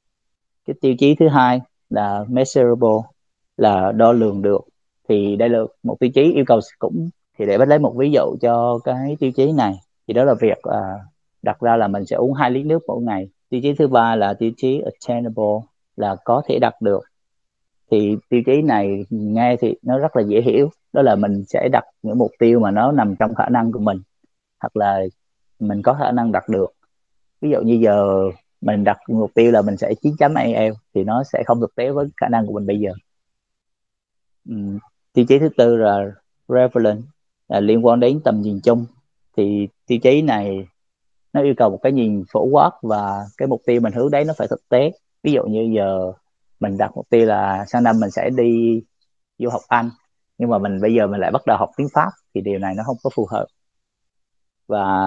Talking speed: 215 wpm